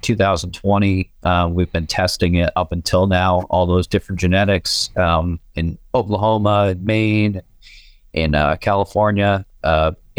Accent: American